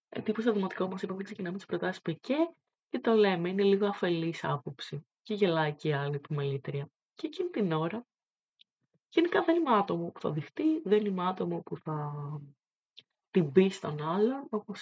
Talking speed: 170 wpm